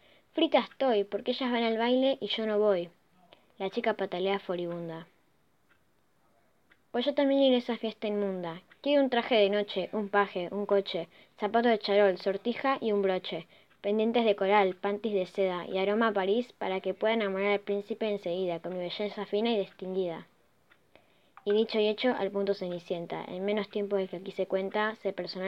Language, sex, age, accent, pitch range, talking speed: Spanish, female, 20-39, Argentinian, 185-215 Hz, 185 wpm